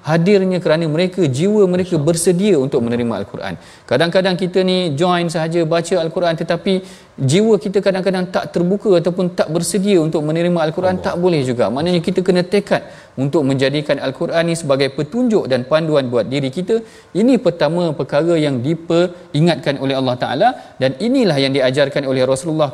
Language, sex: Malayalam, male